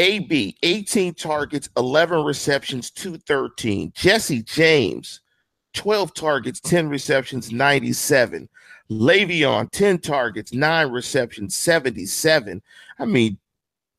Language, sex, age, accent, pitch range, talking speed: English, male, 40-59, American, 130-175 Hz, 90 wpm